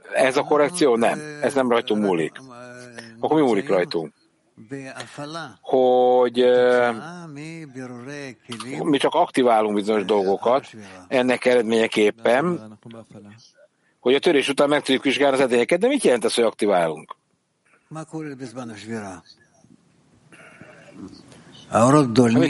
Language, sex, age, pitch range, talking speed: English, male, 60-79, 120-150 Hz, 95 wpm